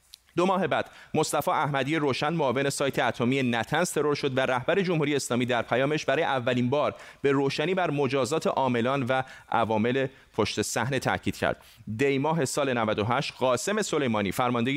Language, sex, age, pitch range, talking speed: Persian, male, 30-49, 120-150 Hz, 155 wpm